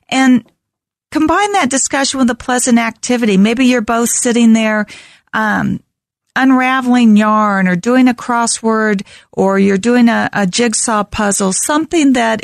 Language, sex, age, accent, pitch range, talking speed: English, female, 40-59, American, 210-265 Hz, 140 wpm